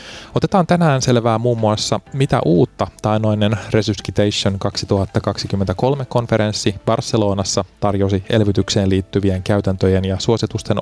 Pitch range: 95-115 Hz